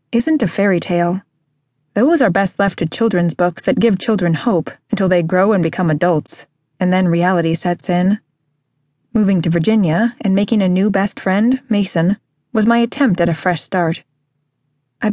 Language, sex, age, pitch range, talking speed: English, female, 20-39, 155-195 Hz, 175 wpm